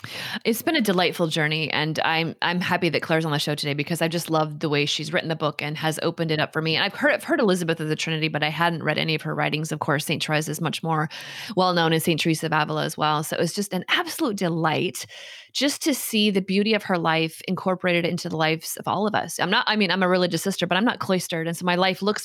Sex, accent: female, American